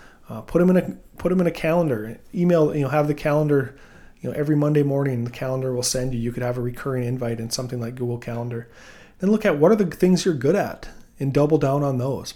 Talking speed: 250 wpm